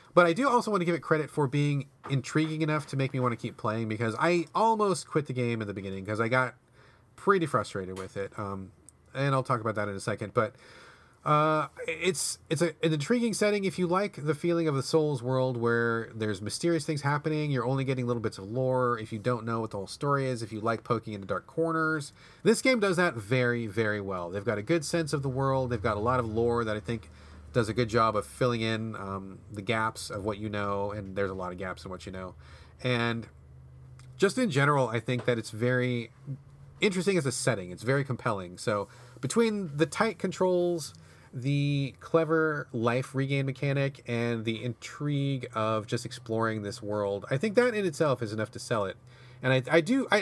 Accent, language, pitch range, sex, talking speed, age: American, English, 110-155 Hz, male, 220 wpm, 30-49